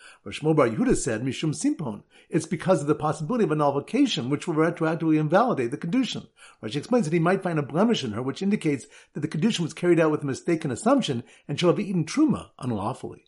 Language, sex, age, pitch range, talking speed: English, male, 50-69, 140-210 Hz, 210 wpm